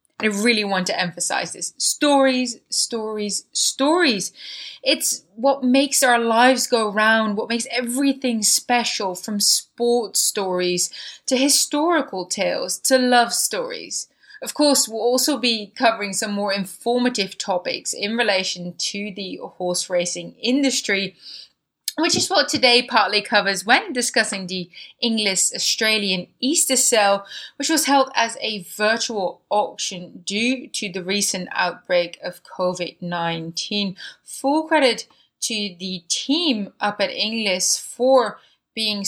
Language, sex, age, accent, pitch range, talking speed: English, female, 20-39, British, 190-250 Hz, 130 wpm